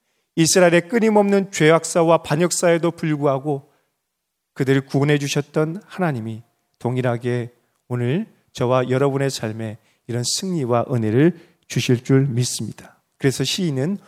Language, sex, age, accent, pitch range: Korean, male, 30-49, native, 140-195 Hz